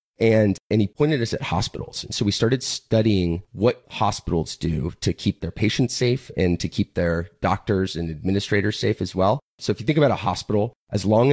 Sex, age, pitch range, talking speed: male, 30-49, 85-110 Hz, 205 wpm